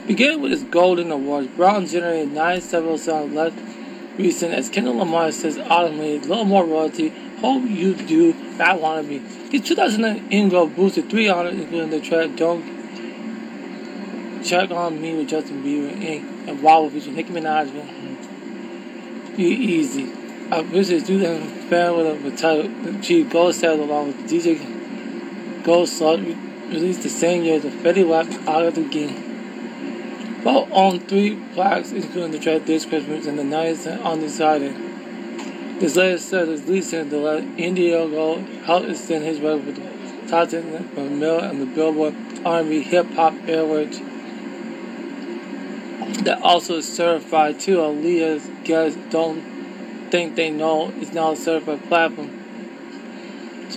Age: 20-39